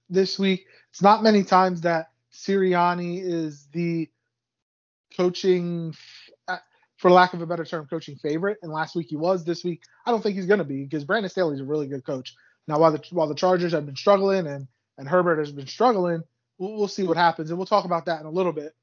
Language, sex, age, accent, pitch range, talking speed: English, male, 20-39, American, 150-185 Hz, 220 wpm